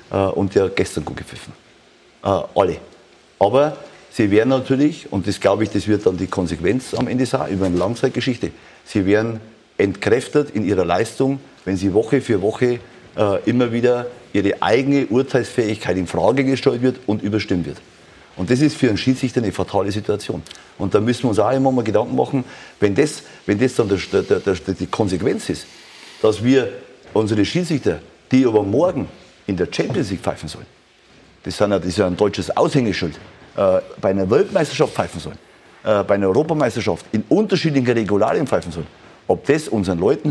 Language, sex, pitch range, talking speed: German, male, 95-130 Hz, 175 wpm